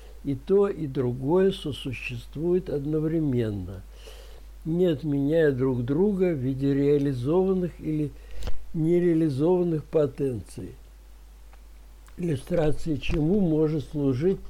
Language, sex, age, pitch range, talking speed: Russian, male, 60-79, 135-175 Hz, 85 wpm